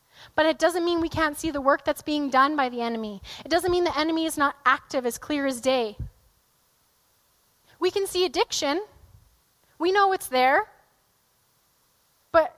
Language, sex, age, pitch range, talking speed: English, female, 10-29, 285-345 Hz, 170 wpm